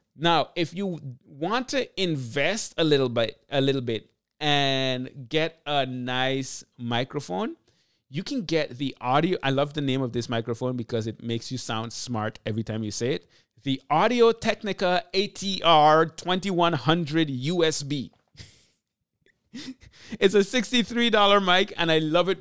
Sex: male